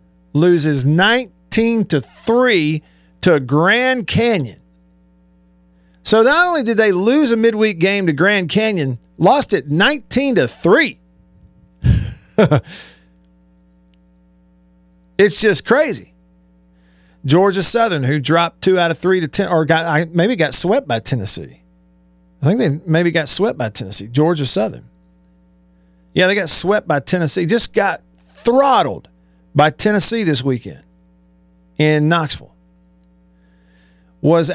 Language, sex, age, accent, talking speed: English, male, 40-59, American, 125 wpm